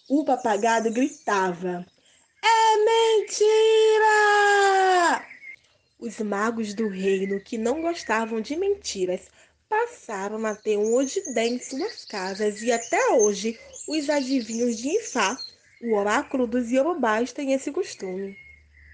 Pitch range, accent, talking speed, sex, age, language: 215-335 Hz, Brazilian, 115 wpm, female, 20-39, Portuguese